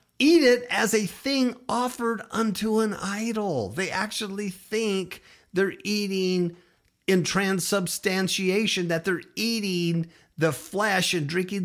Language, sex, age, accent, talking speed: English, male, 50-69, American, 120 wpm